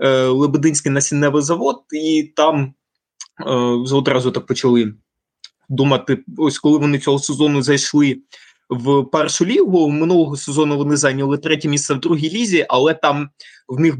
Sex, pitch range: male, 140-165 Hz